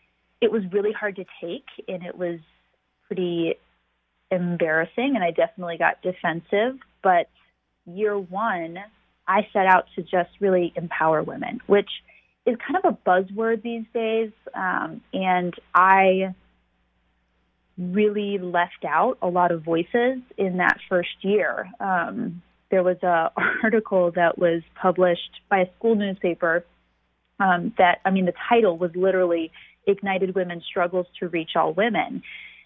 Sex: female